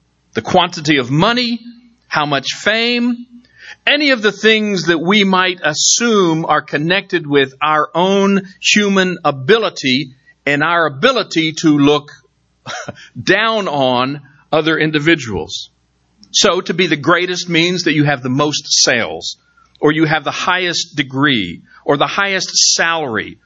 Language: English